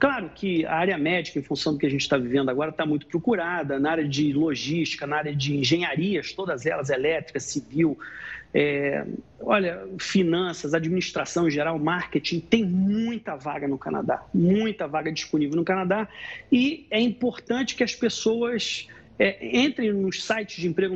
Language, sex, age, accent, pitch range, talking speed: Portuguese, male, 40-59, Brazilian, 160-225 Hz, 160 wpm